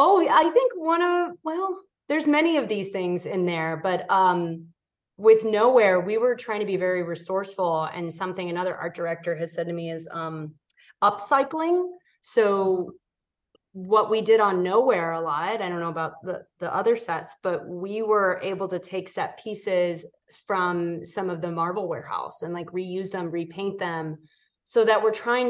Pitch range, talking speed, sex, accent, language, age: 175-230 Hz, 180 wpm, female, American, English, 30-49